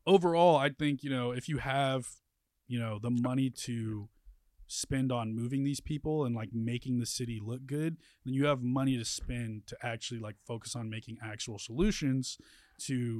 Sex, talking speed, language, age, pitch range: male, 180 wpm, English, 20-39, 110-135 Hz